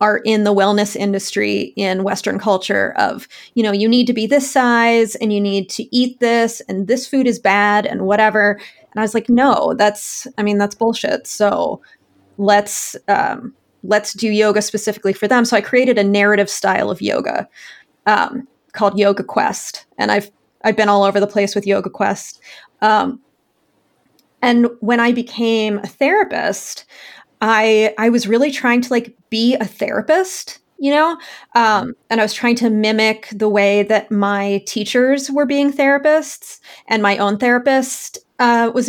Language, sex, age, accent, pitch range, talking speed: English, female, 30-49, American, 205-250 Hz, 175 wpm